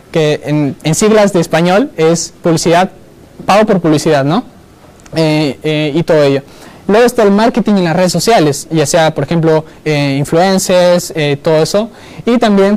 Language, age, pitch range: Spanish, 20-39, 150-190 Hz